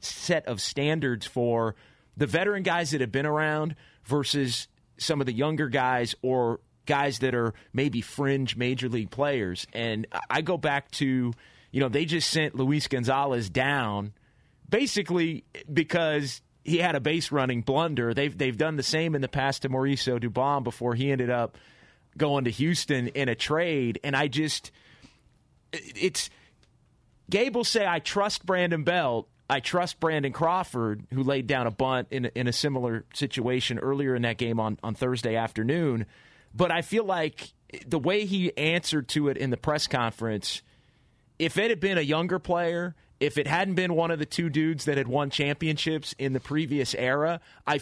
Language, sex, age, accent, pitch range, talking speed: English, male, 30-49, American, 125-155 Hz, 175 wpm